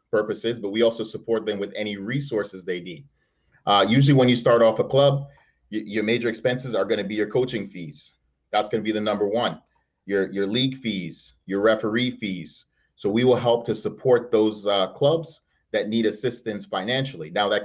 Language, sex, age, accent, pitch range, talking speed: English, male, 30-49, American, 100-130 Hz, 195 wpm